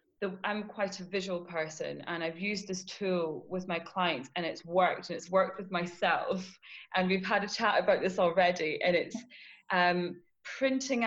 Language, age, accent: English, 20-39, British